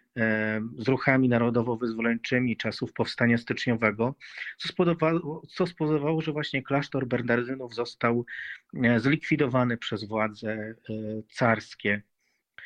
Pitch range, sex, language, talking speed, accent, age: 115-135 Hz, male, Polish, 85 wpm, native, 40-59